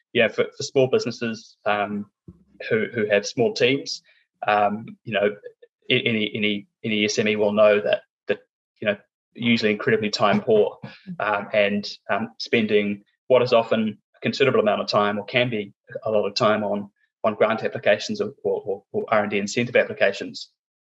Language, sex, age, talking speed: English, male, 20-39, 165 wpm